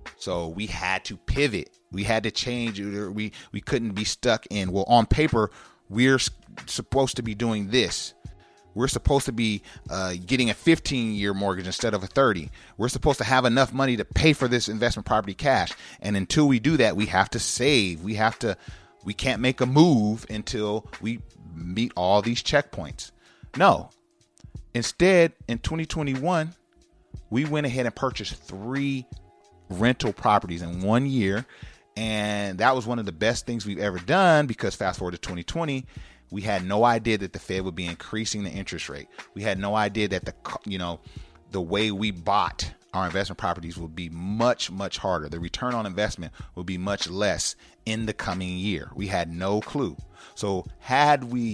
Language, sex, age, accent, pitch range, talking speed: English, male, 30-49, American, 95-125 Hz, 185 wpm